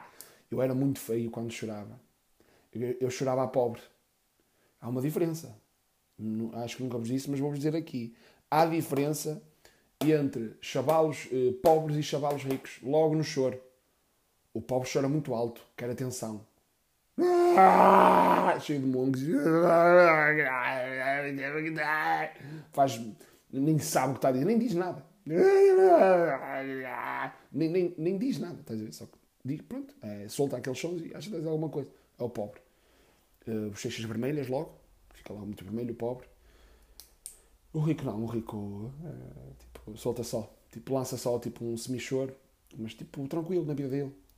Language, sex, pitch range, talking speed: Portuguese, male, 115-150 Hz, 150 wpm